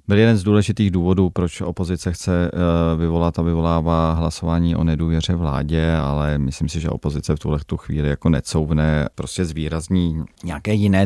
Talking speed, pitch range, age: 165 wpm, 80-85 Hz, 40-59